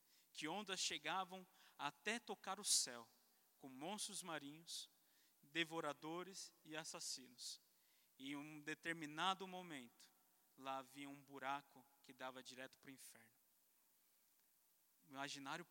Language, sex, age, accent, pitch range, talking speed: Portuguese, male, 20-39, Brazilian, 140-170 Hz, 110 wpm